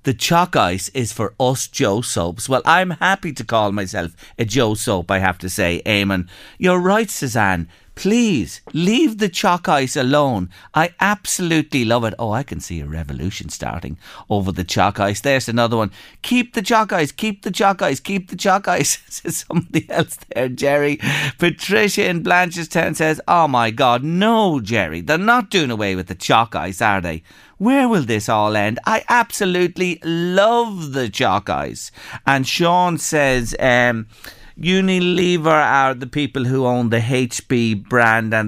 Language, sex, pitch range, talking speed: English, male, 110-180 Hz, 170 wpm